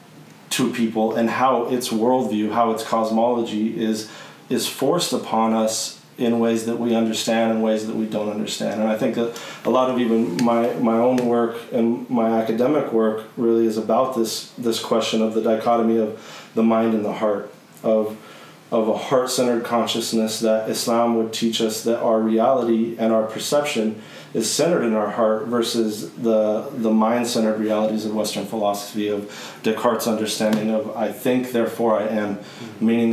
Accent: American